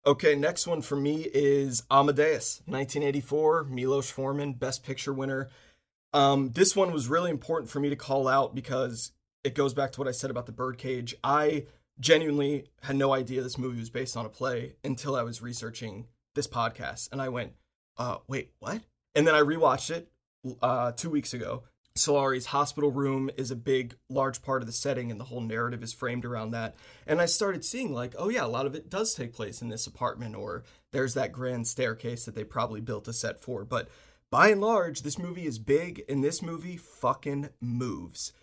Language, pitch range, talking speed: English, 125-145 Hz, 200 wpm